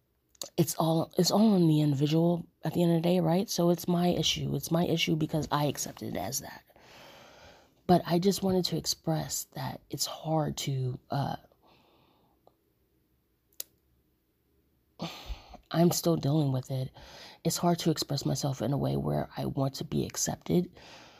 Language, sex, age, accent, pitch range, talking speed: English, female, 20-39, American, 140-175 Hz, 160 wpm